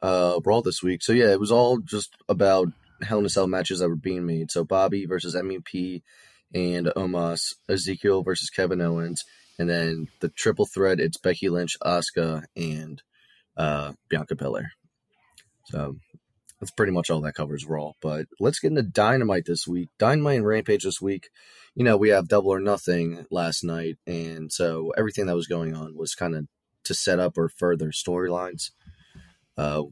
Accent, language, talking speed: American, English, 180 wpm